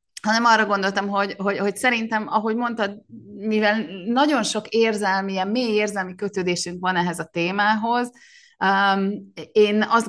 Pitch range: 170-210 Hz